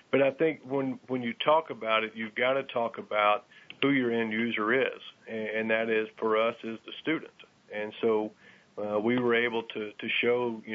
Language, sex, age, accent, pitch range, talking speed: English, male, 40-59, American, 110-125 Hz, 205 wpm